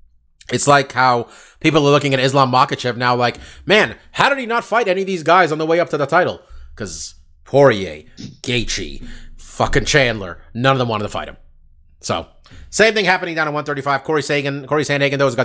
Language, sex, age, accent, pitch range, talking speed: English, male, 30-49, American, 115-145 Hz, 210 wpm